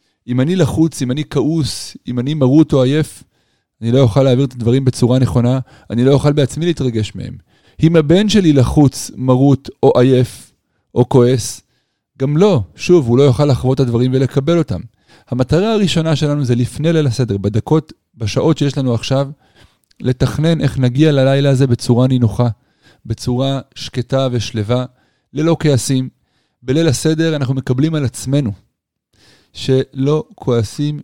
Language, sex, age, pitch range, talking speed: Hebrew, male, 30-49, 120-145 Hz, 150 wpm